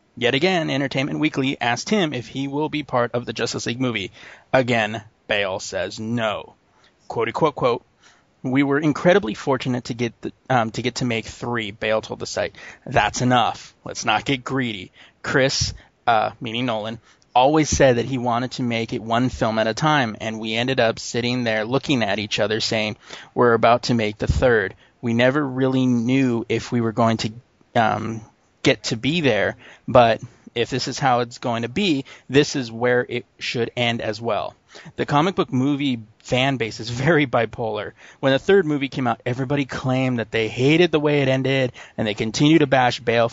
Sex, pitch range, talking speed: male, 115-135 Hz, 190 wpm